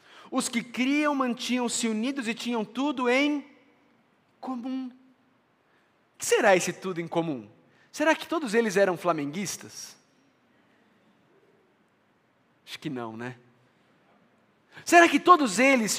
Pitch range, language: 200-275 Hz, Portuguese